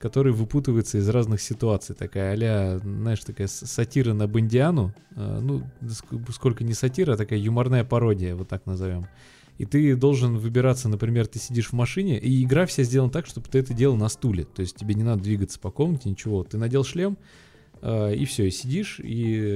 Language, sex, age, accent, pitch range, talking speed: Russian, male, 20-39, native, 105-130 Hz, 185 wpm